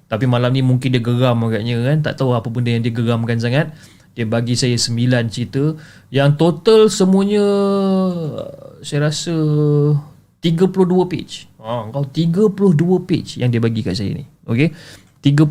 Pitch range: 115-150 Hz